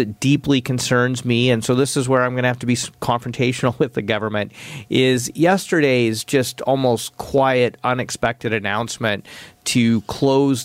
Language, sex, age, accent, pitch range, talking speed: English, male, 40-59, American, 120-145 Hz, 150 wpm